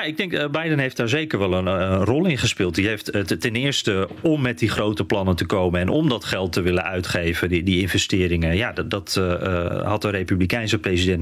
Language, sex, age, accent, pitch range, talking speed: Dutch, male, 40-59, Dutch, 95-125 Hz, 230 wpm